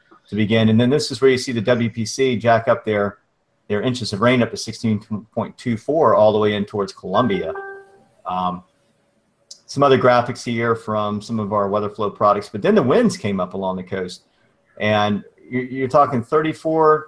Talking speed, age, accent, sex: 185 wpm, 40-59, American, male